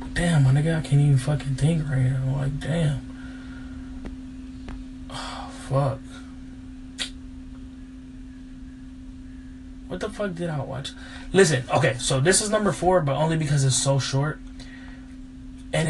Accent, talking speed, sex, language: American, 130 wpm, male, English